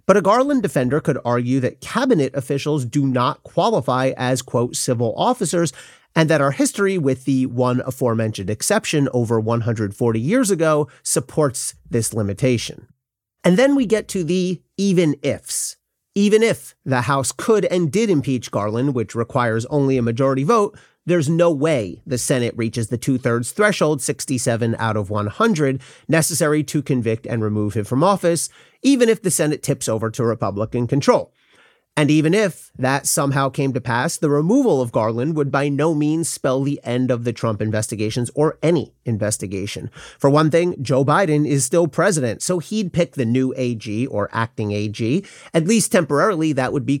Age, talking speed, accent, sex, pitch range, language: 40-59, 170 wpm, American, male, 120-165 Hz, English